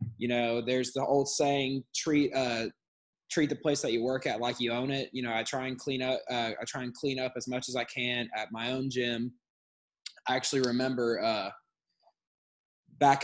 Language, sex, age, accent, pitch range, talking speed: English, male, 20-39, American, 120-140 Hz, 210 wpm